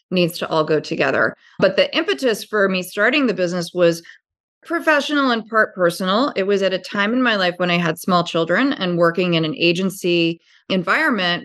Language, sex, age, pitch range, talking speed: English, female, 30-49, 170-215 Hz, 195 wpm